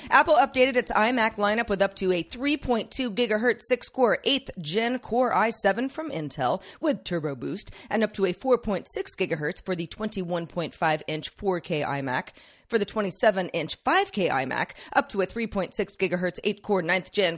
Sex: female